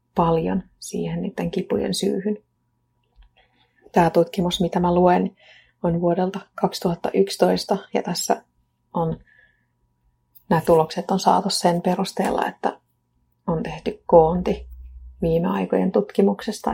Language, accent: Finnish, native